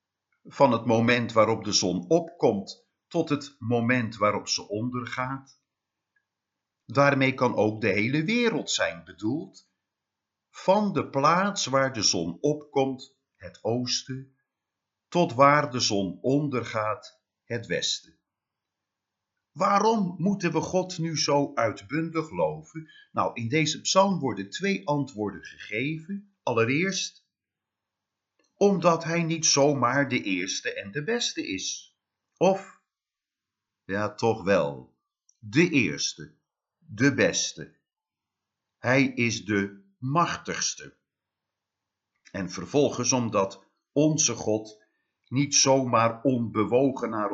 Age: 50-69